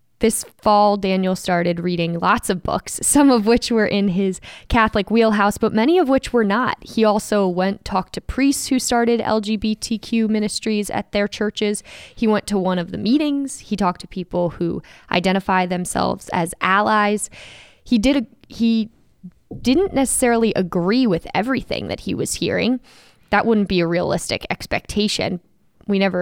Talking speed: 165 wpm